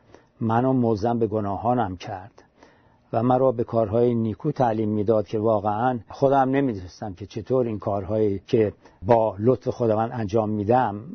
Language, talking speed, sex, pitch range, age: Persian, 140 wpm, male, 105-125 Hz, 50-69